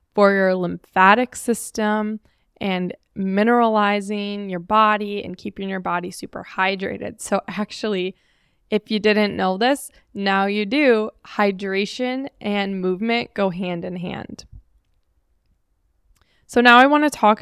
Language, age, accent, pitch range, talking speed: English, 10-29, American, 190-225 Hz, 125 wpm